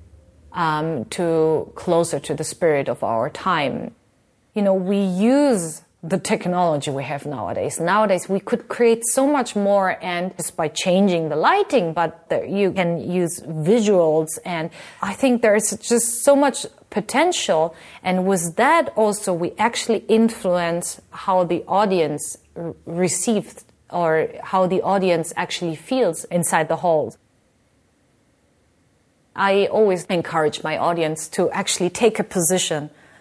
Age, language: 30-49, English